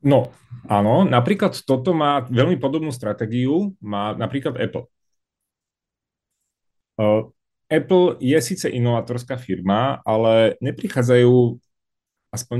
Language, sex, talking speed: Czech, male, 90 wpm